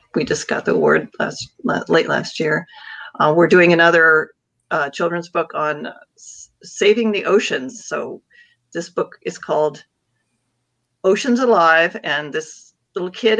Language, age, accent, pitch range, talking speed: English, 40-59, American, 165-220 Hz, 145 wpm